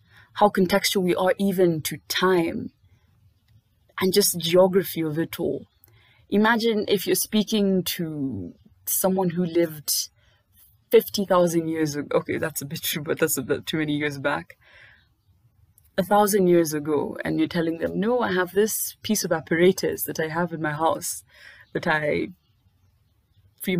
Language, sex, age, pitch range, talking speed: English, female, 20-39, 160-205 Hz, 155 wpm